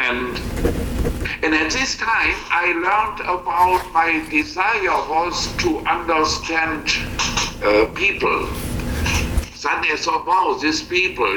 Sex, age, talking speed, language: male, 60-79, 100 wpm, English